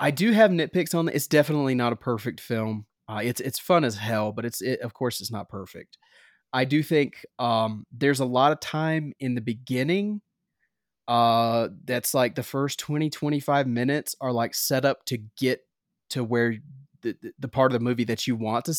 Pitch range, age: 115-140 Hz, 30-49